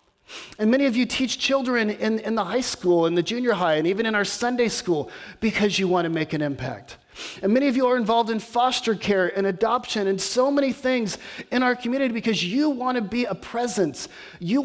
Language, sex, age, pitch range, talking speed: English, male, 30-49, 180-245 Hz, 220 wpm